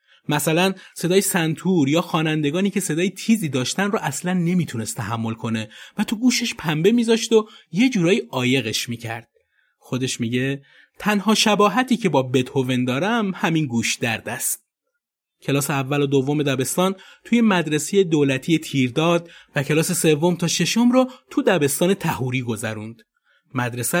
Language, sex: Persian, male